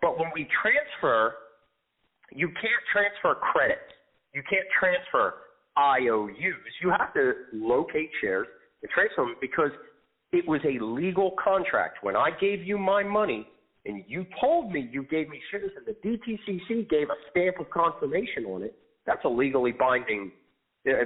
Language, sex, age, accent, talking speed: English, male, 40-59, American, 155 wpm